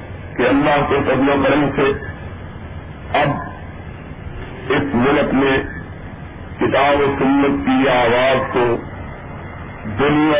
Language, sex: Urdu, male